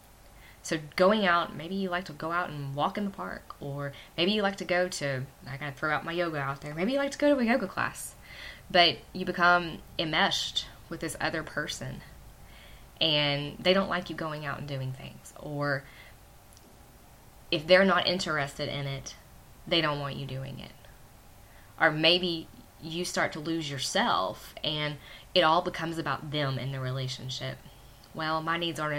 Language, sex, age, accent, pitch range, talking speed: English, female, 10-29, American, 135-170 Hz, 185 wpm